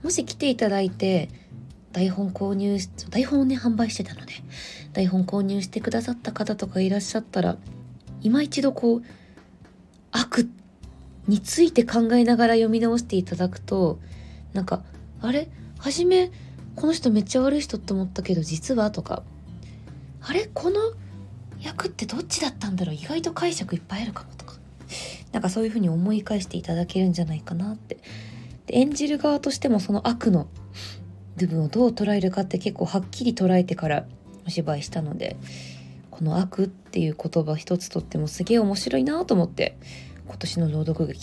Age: 20-39